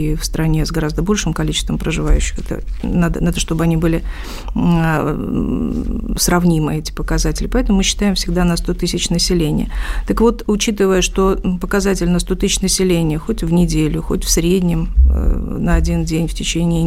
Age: 50-69